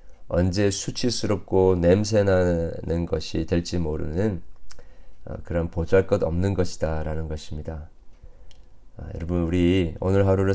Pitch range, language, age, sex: 80-100 Hz, Korean, 40-59, male